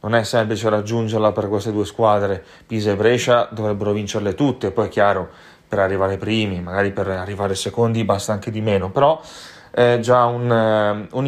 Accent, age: native, 30-49